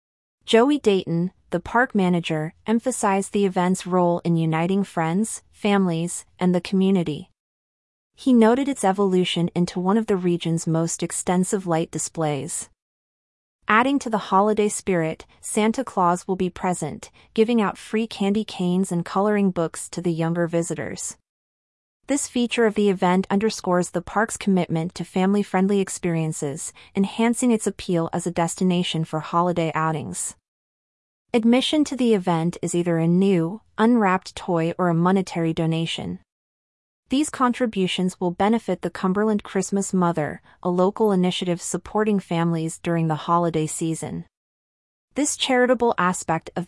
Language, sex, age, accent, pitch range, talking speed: English, female, 30-49, American, 170-205 Hz, 140 wpm